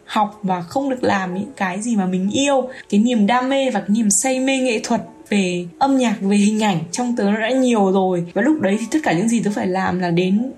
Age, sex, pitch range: 10-29, female, 190-255 Hz